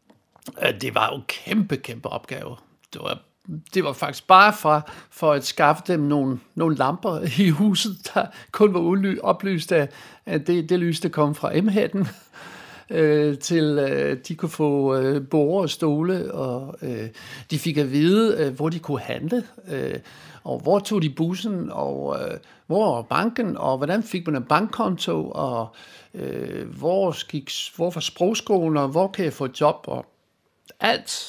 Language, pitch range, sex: Danish, 145-185 Hz, male